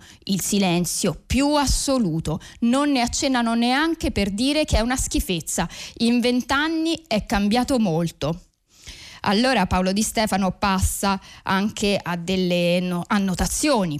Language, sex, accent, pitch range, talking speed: Italian, female, native, 190-250 Hz, 120 wpm